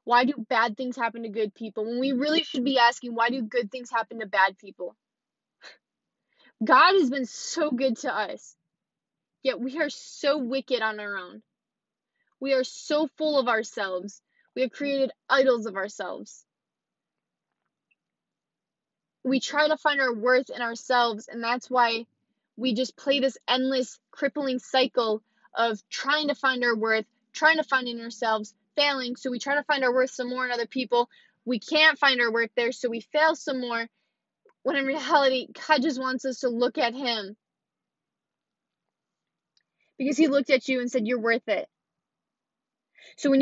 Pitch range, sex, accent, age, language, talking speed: 235-280 Hz, female, American, 10-29, English, 175 wpm